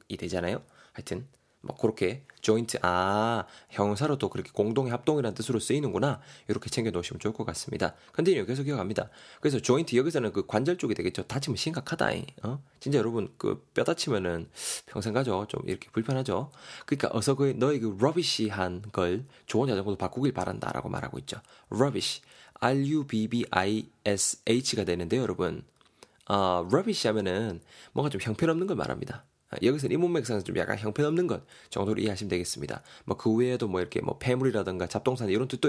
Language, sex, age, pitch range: Korean, male, 20-39, 95-135 Hz